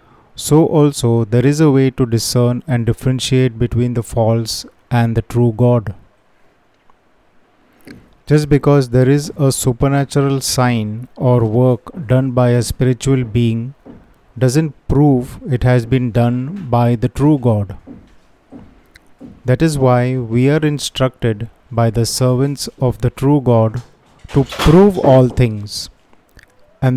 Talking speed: 130 wpm